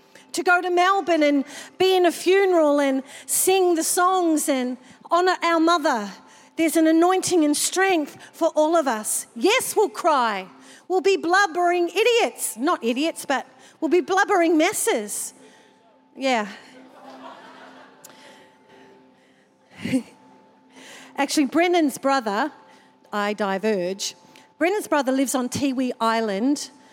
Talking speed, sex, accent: 115 wpm, female, Australian